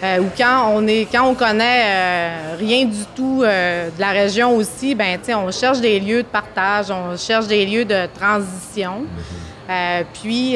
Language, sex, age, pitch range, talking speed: French, female, 20-39, 185-225 Hz, 180 wpm